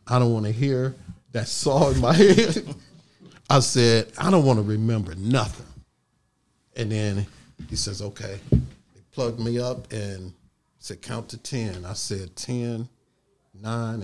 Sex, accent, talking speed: male, American, 155 wpm